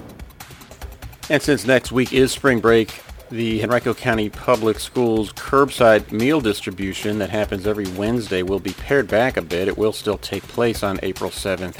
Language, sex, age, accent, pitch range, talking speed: English, male, 40-59, American, 95-115 Hz, 170 wpm